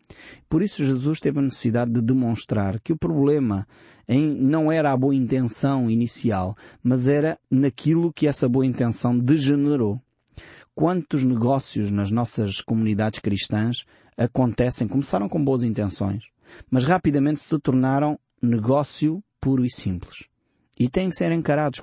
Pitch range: 115-145 Hz